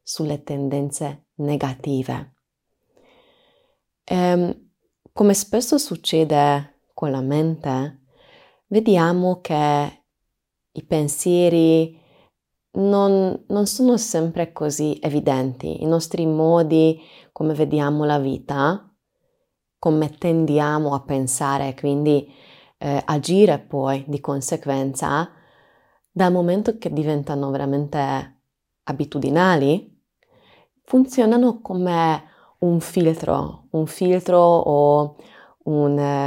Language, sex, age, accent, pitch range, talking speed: Italian, female, 20-39, native, 140-175 Hz, 85 wpm